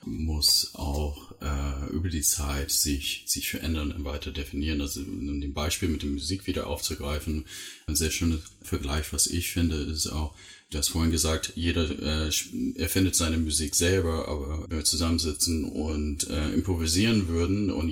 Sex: male